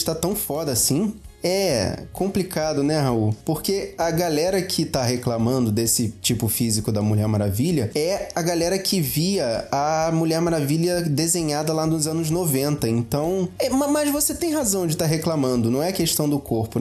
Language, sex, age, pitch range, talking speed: Portuguese, male, 20-39, 135-180 Hz, 170 wpm